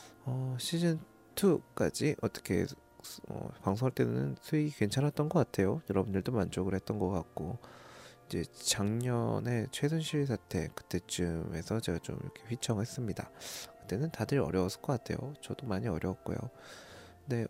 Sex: male